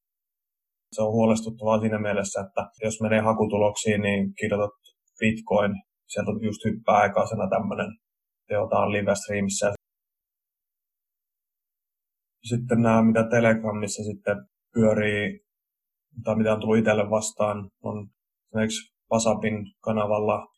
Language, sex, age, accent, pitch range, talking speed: Finnish, male, 30-49, native, 100-110 Hz, 105 wpm